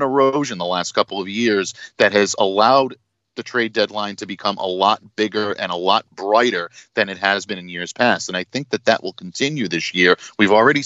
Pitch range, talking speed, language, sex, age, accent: 90-115 Hz, 215 wpm, English, male, 40-59, American